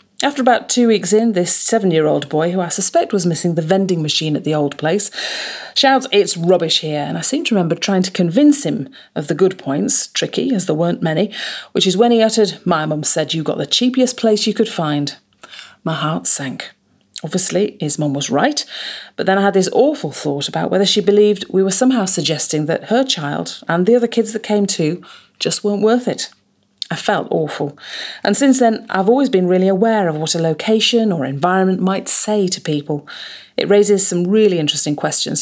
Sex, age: female, 40-59